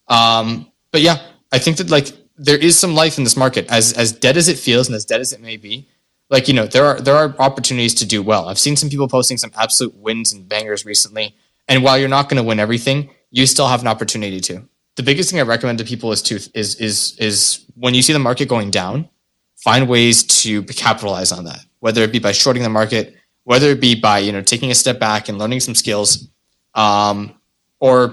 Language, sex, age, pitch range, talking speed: English, male, 20-39, 110-135 Hz, 235 wpm